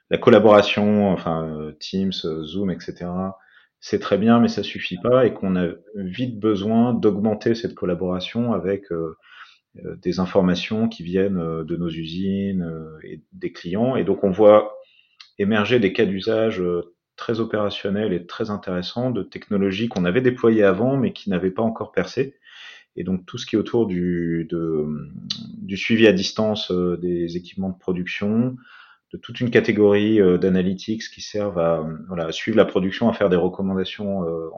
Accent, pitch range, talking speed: French, 85-105 Hz, 160 wpm